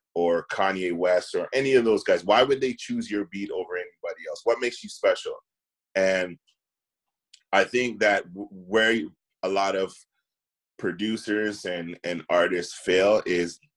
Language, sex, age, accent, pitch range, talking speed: English, male, 30-49, American, 95-140 Hz, 155 wpm